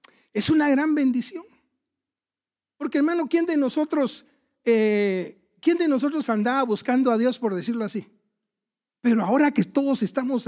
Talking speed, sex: 145 wpm, male